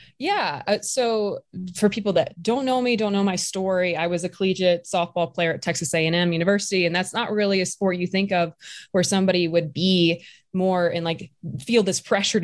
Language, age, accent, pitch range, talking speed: English, 20-39, American, 170-205 Hz, 200 wpm